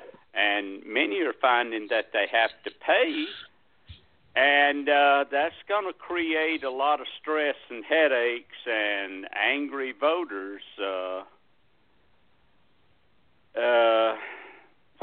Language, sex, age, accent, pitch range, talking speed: English, male, 60-79, American, 125-180 Hz, 105 wpm